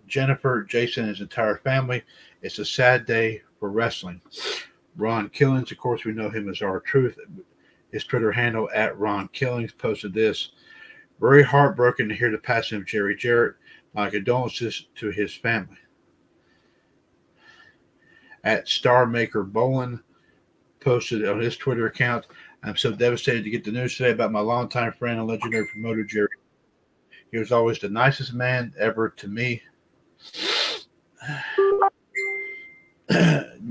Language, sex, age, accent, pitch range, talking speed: English, male, 50-69, American, 110-125 Hz, 140 wpm